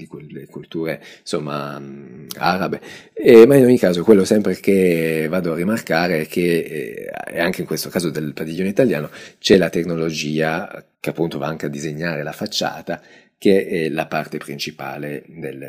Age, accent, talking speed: 30-49, native, 155 wpm